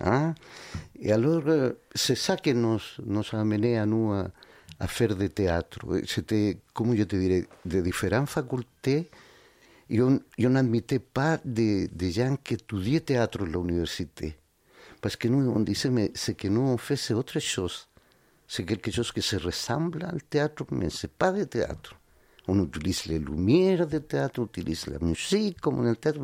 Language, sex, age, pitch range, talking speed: French, male, 50-69, 95-130 Hz, 170 wpm